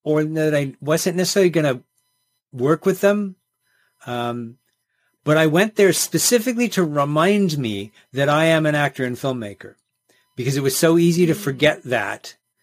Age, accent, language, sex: 40-59, American, English, male